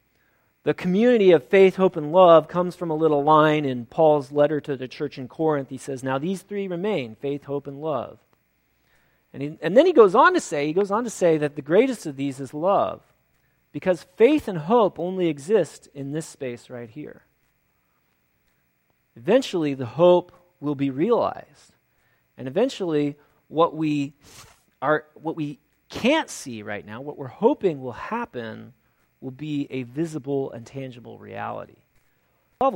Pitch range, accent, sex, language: 125-180 Hz, American, male, English